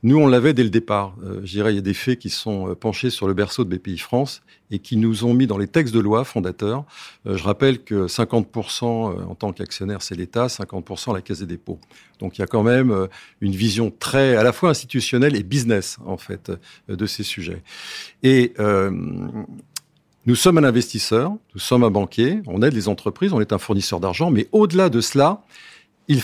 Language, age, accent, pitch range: French, 50-69, French, 100-140 Hz